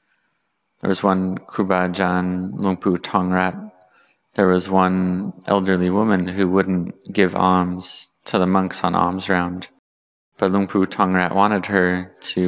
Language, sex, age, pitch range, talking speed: English, male, 20-39, 90-95 Hz, 130 wpm